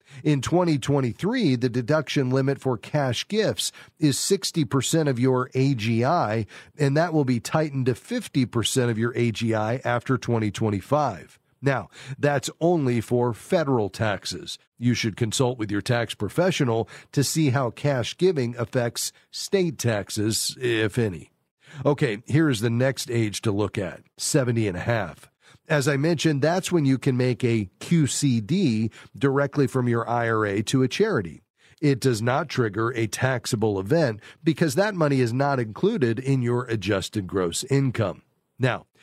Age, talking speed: 40-59, 150 wpm